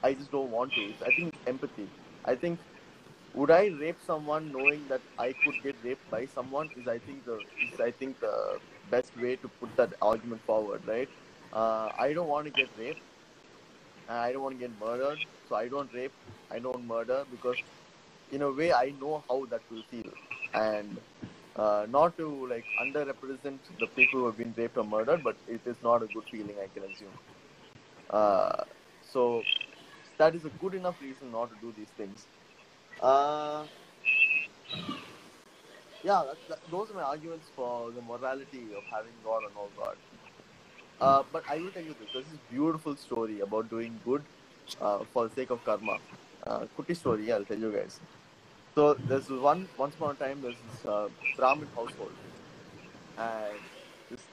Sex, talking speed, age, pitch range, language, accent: male, 185 wpm, 20-39, 115-150 Hz, Tamil, native